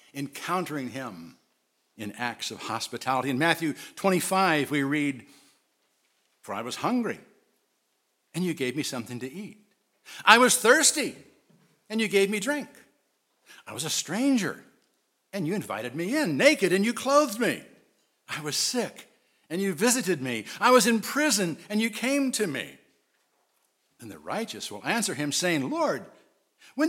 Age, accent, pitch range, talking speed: 60-79, American, 140-230 Hz, 155 wpm